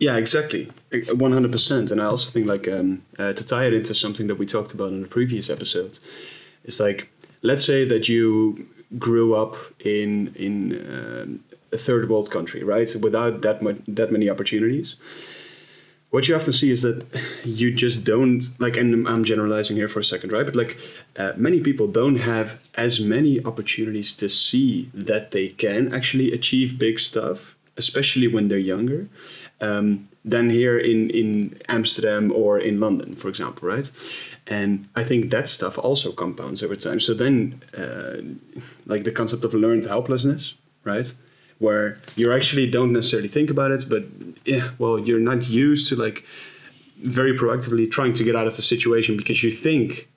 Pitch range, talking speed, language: 110-125 Hz, 175 wpm, English